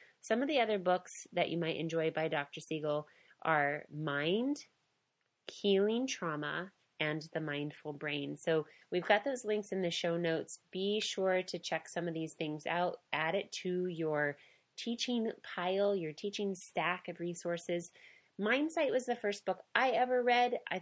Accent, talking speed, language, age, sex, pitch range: American, 165 wpm, English, 30-49, female, 160-195 Hz